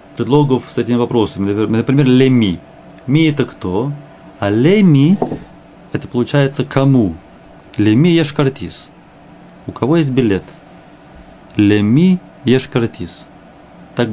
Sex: male